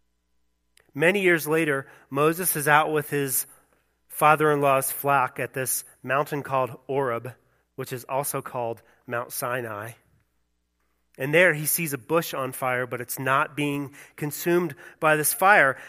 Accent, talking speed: American, 140 wpm